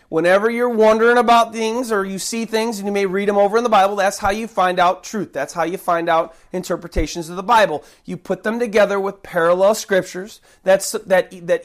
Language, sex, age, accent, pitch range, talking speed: English, male, 30-49, American, 175-225 Hz, 210 wpm